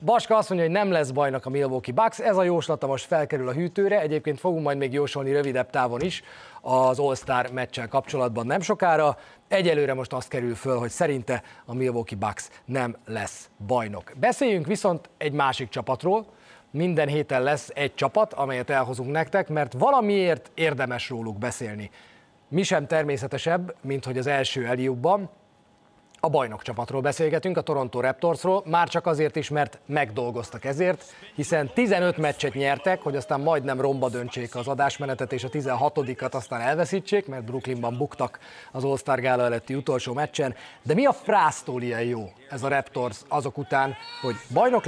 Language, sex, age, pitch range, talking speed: Hungarian, male, 30-49, 125-160 Hz, 165 wpm